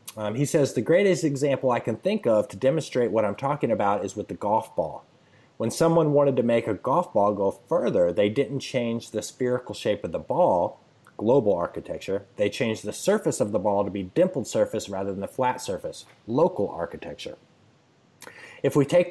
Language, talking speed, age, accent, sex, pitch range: English, 200 wpm, 30-49, American, male, 105-130 Hz